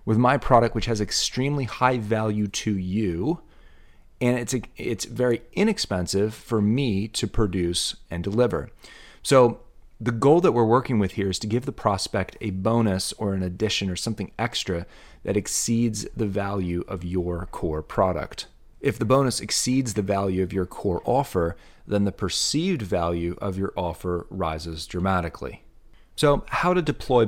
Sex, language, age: male, English, 30-49